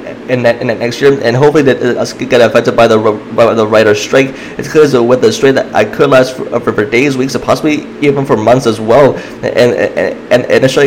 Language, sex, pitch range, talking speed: English, male, 120-135 Hz, 230 wpm